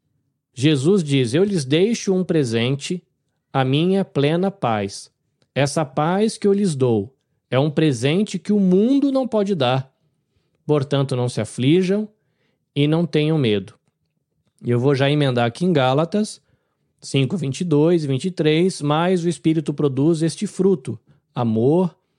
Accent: Brazilian